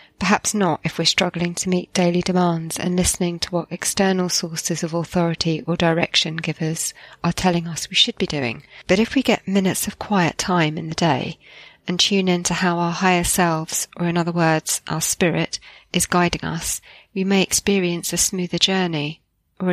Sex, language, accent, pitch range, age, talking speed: female, English, British, 165-185 Hz, 40-59, 185 wpm